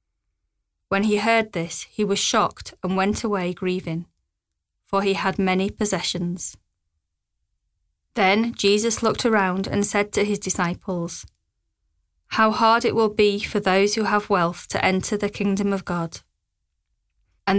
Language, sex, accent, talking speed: English, female, British, 145 wpm